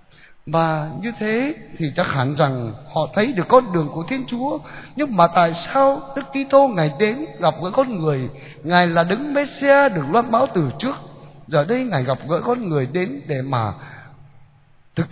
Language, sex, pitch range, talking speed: Vietnamese, male, 145-245 Hz, 185 wpm